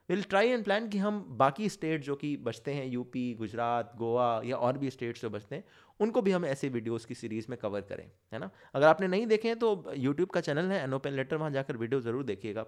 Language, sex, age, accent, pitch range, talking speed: Hindi, male, 20-39, native, 125-180 Hz, 230 wpm